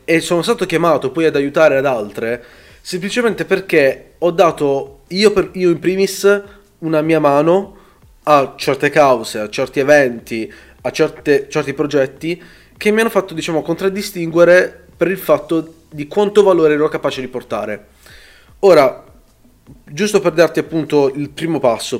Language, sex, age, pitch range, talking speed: Italian, male, 20-39, 130-165 Hz, 150 wpm